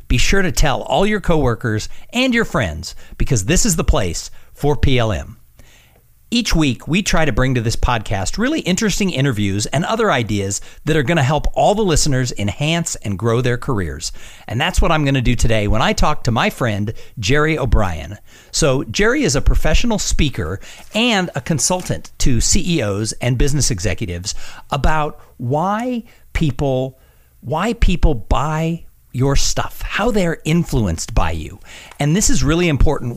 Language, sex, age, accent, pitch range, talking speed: English, male, 50-69, American, 110-170 Hz, 170 wpm